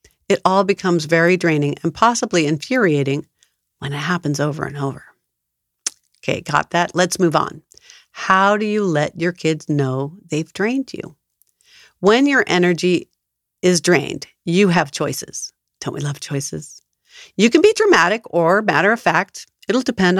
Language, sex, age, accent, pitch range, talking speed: English, female, 50-69, American, 160-220 Hz, 155 wpm